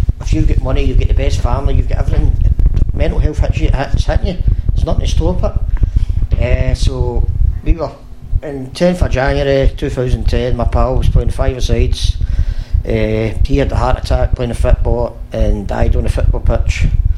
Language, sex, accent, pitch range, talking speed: English, male, British, 85-110 Hz, 190 wpm